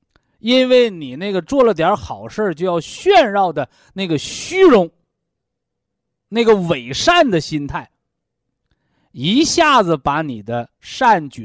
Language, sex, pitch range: Chinese, male, 125-195 Hz